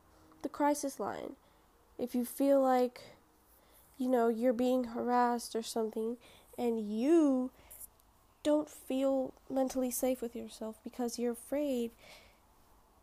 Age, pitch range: 10-29, 215-265 Hz